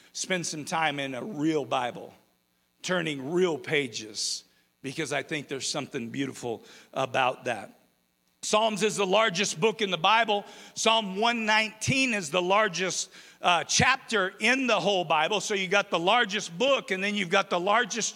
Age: 50-69